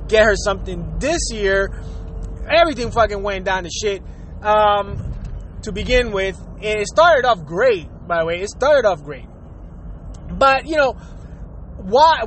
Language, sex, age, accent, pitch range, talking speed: English, male, 20-39, American, 185-250 Hz, 150 wpm